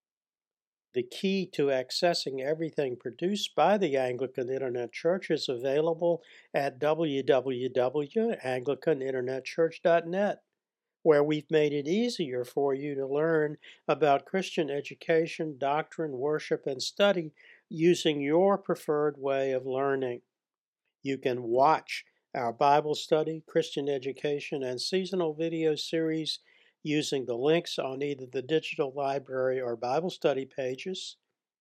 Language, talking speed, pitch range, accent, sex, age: English, 115 wpm, 140-170 Hz, American, male, 60-79